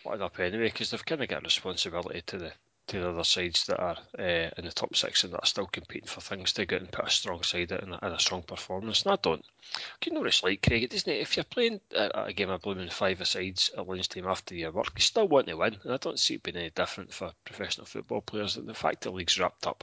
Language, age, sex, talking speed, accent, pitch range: English, 30-49, male, 270 wpm, British, 90-105 Hz